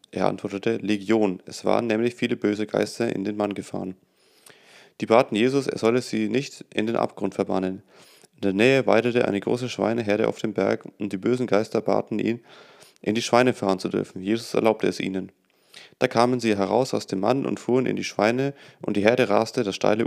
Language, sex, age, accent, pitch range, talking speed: German, male, 30-49, German, 100-120 Hz, 205 wpm